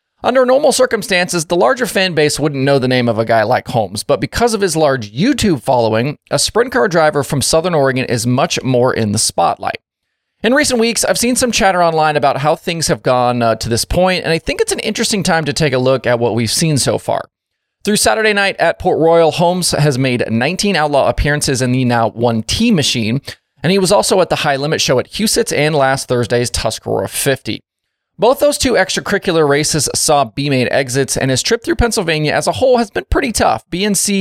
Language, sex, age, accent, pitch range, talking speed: English, male, 30-49, American, 130-195 Hz, 220 wpm